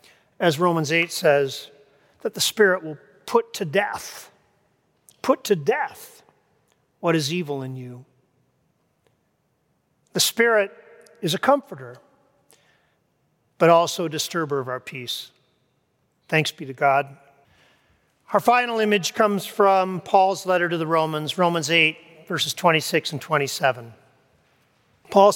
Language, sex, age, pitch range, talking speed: English, male, 40-59, 145-205 Hz, 125 wpm